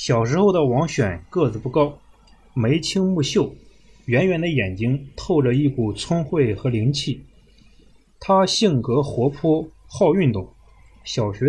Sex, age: male, 20-39